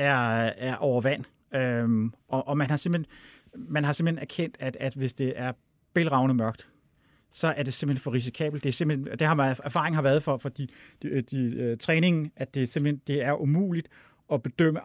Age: 30-49